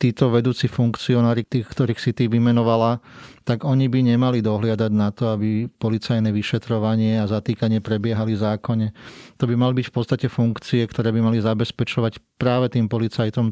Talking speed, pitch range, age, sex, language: 160 wpm, 110-120 Hz, 30-49, male, Slovak